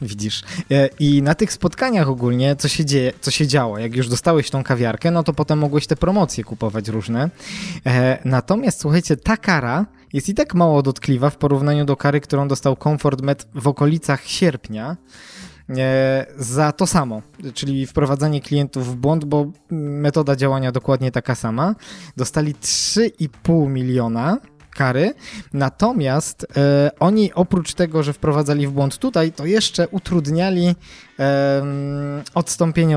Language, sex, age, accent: Polish, male, 20-39, native